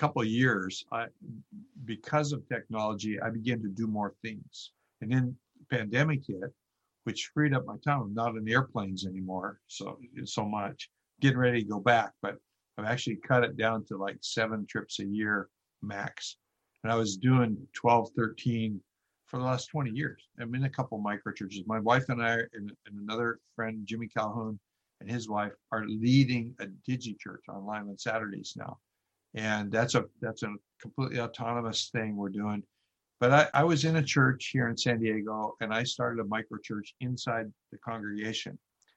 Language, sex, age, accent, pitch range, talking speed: English, male, 60-79, American, 105-125 Hz, 175 wpm